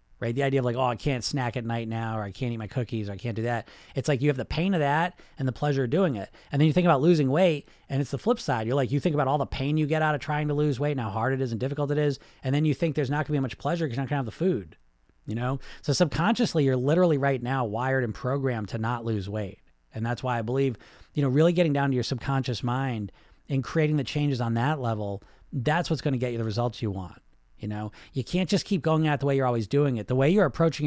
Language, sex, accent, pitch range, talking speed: English, male, American, 115-145 Hz, 305 wpm